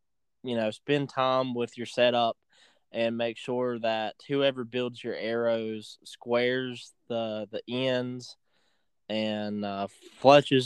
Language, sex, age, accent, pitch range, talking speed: English, male, 20-39, American, 110-130 Hz, 125 wpm